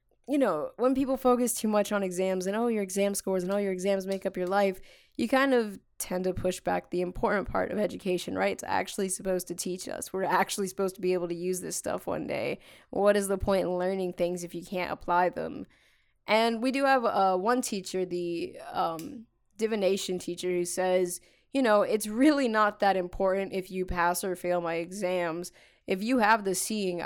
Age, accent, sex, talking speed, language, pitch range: 20-39, American, female, 220 wpm, English, 180-210 Hz